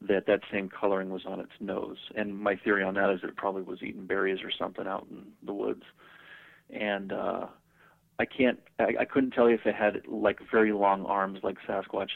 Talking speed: 205 wpm